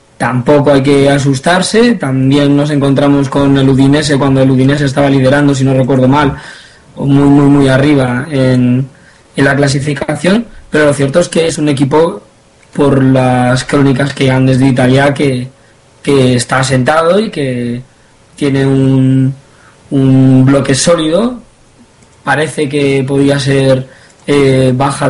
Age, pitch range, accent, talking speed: 20-39, 130-145 Hz, Spanish, 140 wpm